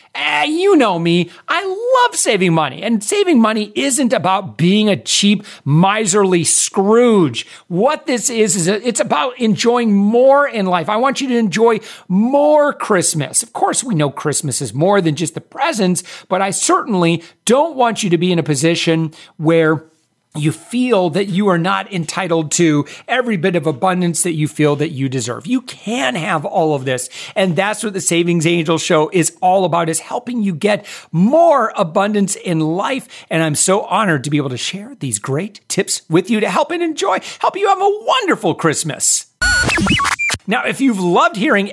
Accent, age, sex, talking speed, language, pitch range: American, 40-59, male, 185 wpm, English, 165-225 Hz